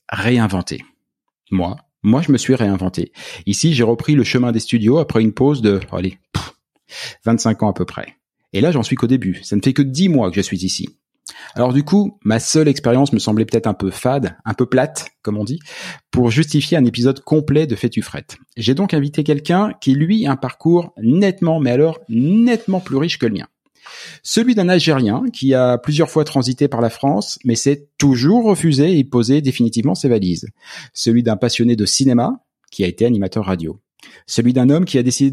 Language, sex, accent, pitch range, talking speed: French, male, French, 115-155 Hz, 205 wpm